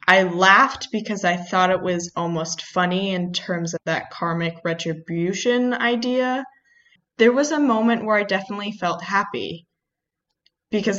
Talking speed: 140 wpm